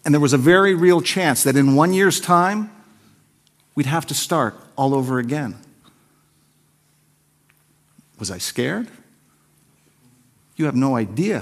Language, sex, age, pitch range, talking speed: English, male, 50-69, 115-155 Hz, 135 wpm